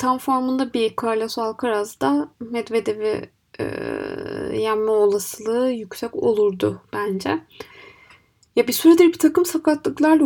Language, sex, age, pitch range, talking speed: Turkish, female, 20-39, 210-285 Hz, 105 wpm